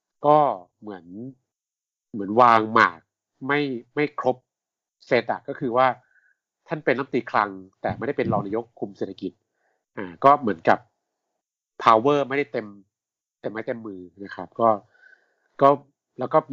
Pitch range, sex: 100-130 Hz, male